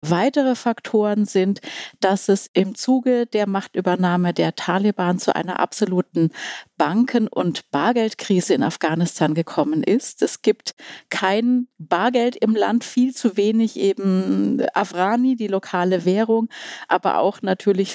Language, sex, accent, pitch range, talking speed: German, female, German, 185-220 Hz, 125 wpm